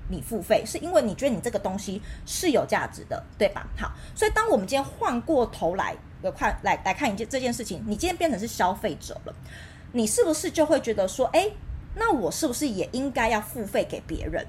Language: Chinese